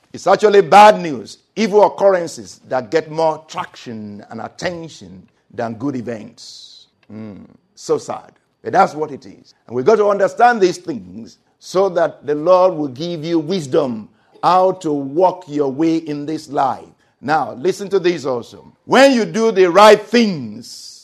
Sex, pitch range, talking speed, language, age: male, 165-250 Hz, 165 wpm, English, 50-69